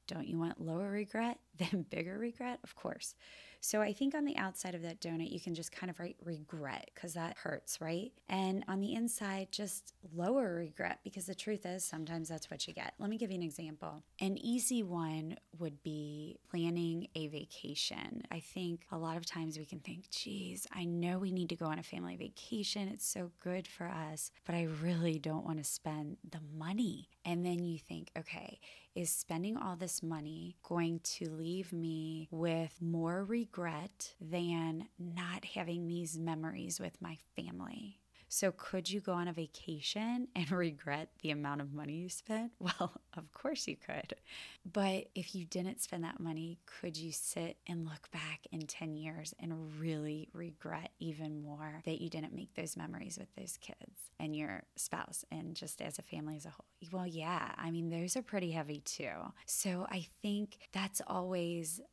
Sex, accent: female, American